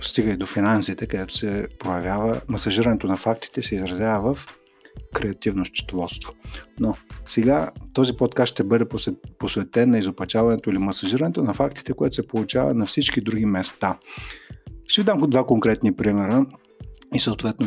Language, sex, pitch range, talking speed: Bulgarian, male, 100-130 Hz, 150 wpm